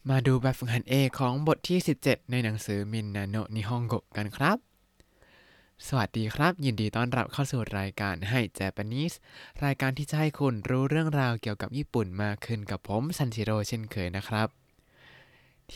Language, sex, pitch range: Thai, male, 110-135 Hz